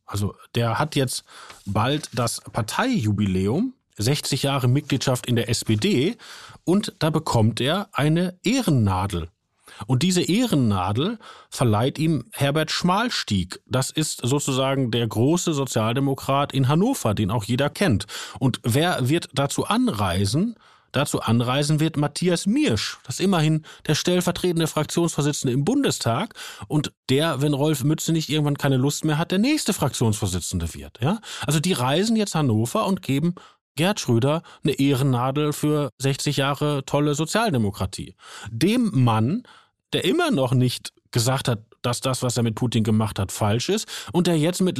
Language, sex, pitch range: German, male, 125-160 Hz